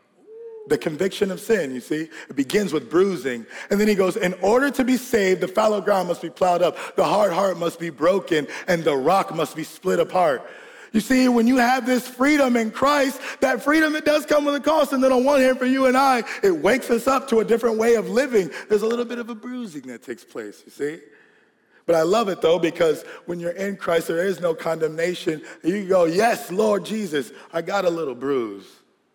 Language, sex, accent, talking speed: English, male, American, 230 wpm